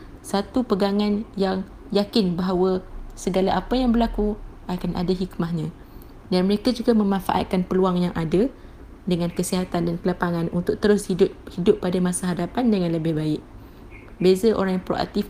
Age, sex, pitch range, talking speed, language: 20-39, female, 180-210 Hz, 140 wpm, Malay